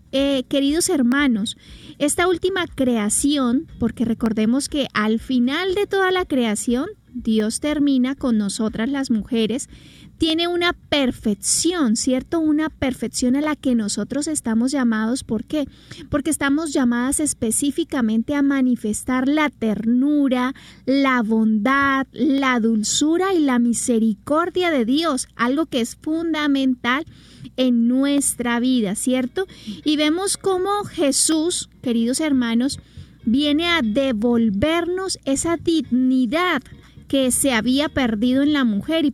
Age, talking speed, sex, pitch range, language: 30-49, 120 wpm, female, 240-310 Hz, Spanish